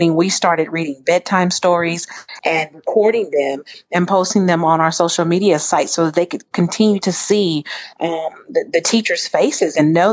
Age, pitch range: 40-59, 165-205 Hz